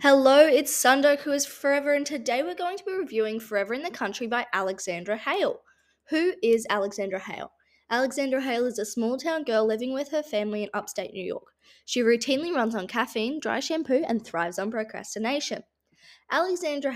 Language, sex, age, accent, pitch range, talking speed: English, female, 10-29, Australian, 220-290 Hz, 180 wpm